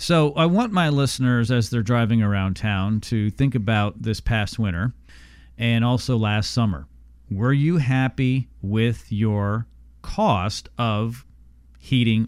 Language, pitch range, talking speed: English, 90-125 Hz, 135 wpm